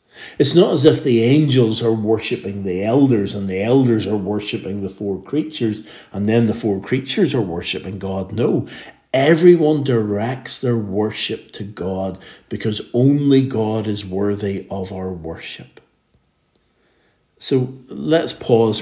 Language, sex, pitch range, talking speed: English, male, 100-130 Hz, 140 wpm